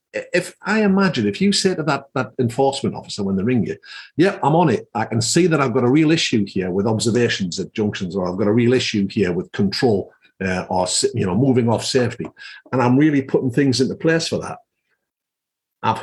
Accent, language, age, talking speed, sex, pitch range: British, English, 50-69, 220 wpm, male, 115-180 Hz